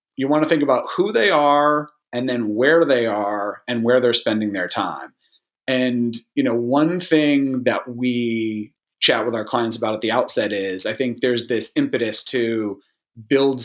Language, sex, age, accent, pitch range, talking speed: English, male, 30-49, American, 120-165 Hz, 185 wpm